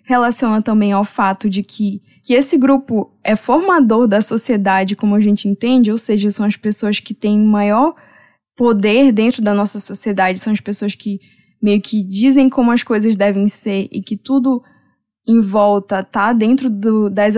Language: Portuguese